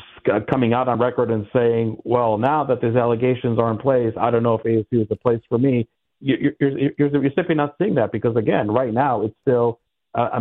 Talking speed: 225 wpm